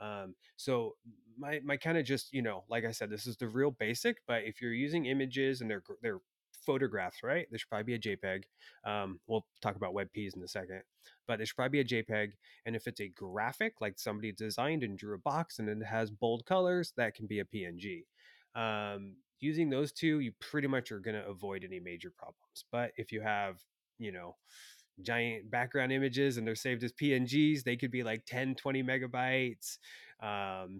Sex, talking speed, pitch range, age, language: male, 205 wpm, 110-135 Hz, 30-49, English